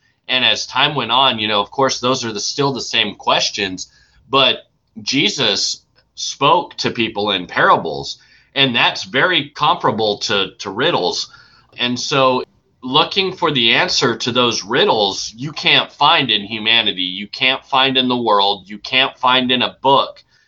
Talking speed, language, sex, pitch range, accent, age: 165 wpm, English, male, 100-130 Hz, American, 30-49